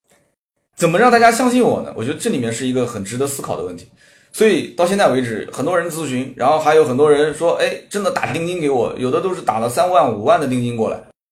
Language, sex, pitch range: Chinese, male, 110-155 Hz